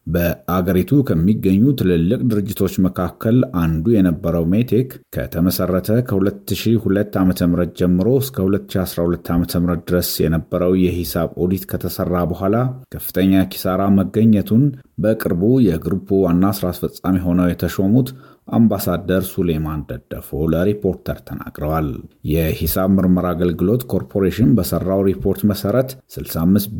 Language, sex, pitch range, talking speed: Amharic, male, 85-105 Hz, 95 wpm